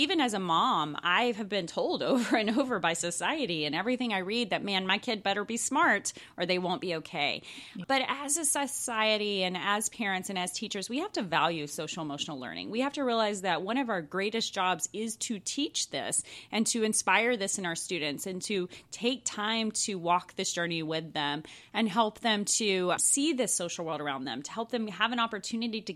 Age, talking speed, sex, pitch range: 30-49, 215 wpm, female, 165-230 Hz